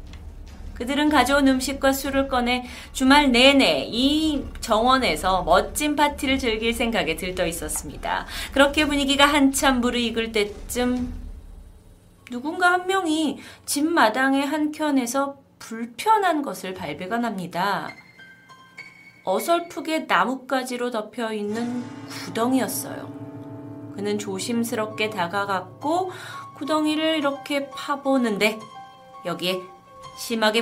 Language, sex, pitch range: Korean, female, 185-275 Hz